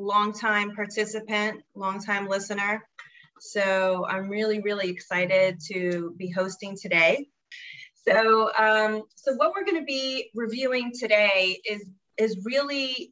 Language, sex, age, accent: English, female, 30-49, American